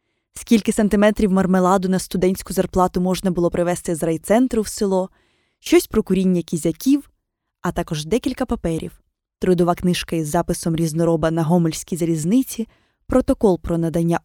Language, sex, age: Ukrainian, female, 20-39